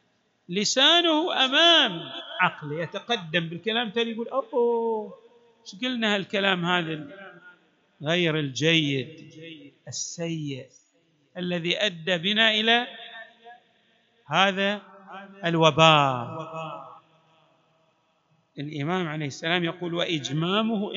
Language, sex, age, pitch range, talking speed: Arabic, male, 50-69, 165-240 Hz, 70 wpm